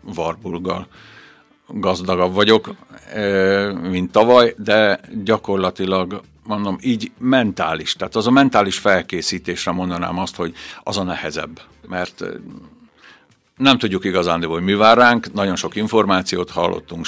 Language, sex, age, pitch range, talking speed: Hungarian, male, 60-79, 90-105 Hz, 115 wpm